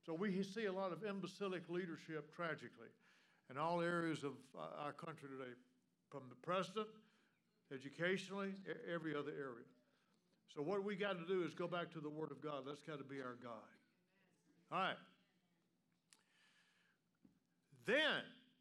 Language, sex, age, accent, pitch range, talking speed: English, male, 60-79, American, 150-185 Hz, 150 wpm